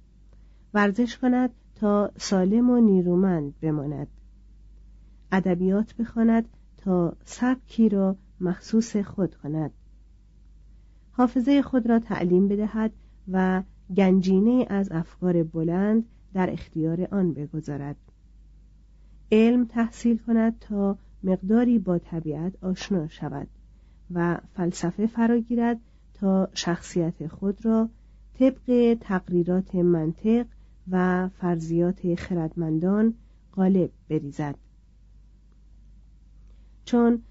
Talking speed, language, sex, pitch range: 85 wpm, Persian, female, 165-220 Hz